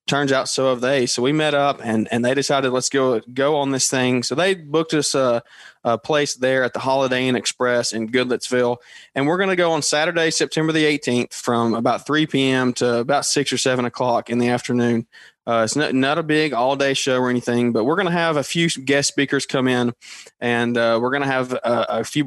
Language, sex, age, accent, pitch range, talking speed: English, male, 20-39, American, 120-145 Hz, 235 wpm